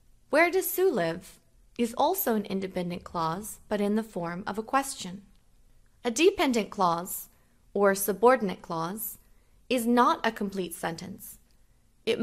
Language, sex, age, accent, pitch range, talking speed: English, female, 20-39, American, 190-245 Hz, 135 wpm